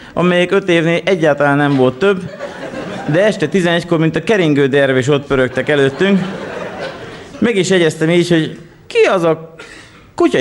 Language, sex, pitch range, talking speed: Hungarian, male, 130-185 Hz, 150 wpm